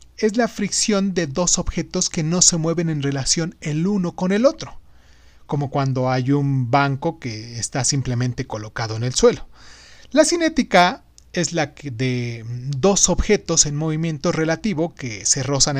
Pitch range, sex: 125-175 Hz, male